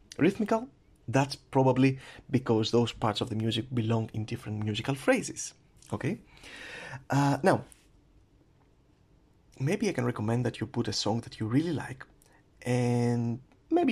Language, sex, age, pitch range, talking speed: English, male, 30-49, 115-140 Hz, 140 wpm